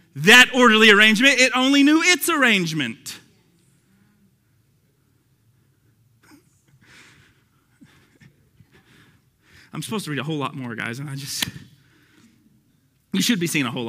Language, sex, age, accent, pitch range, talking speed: English, male, 30-49, American, 135-225 Hz, 110 wpm